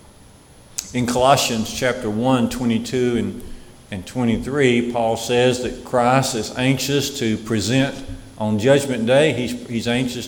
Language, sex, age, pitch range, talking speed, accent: English, male, 50-69, 100-130 Hz, 130 wpm, American